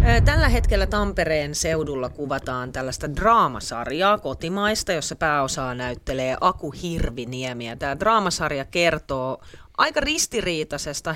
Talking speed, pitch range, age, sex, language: 100 wpm, 135-195 Hz, 30-49, female, Finnish